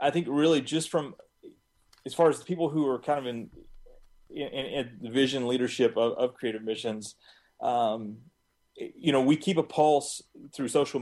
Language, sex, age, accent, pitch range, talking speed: English, male, 30-49, American, 115-140 Hz, 180 wpm